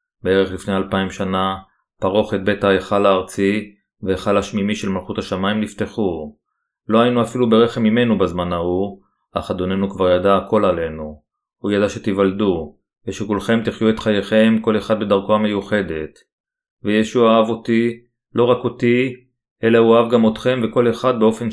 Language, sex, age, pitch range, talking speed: Hebrew, male, 30-49, 100-115 Hz, 150 wpm